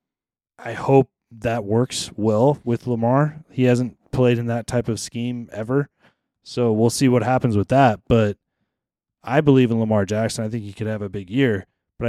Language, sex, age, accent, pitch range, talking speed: English, male, 20-39, American, 105-125 Hz, 190 wpm